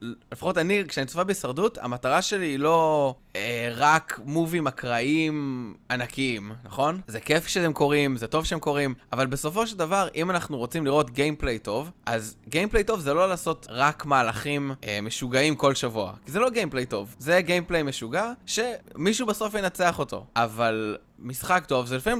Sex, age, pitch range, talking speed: male, 20-39, 120-175 Hz, 170 wpm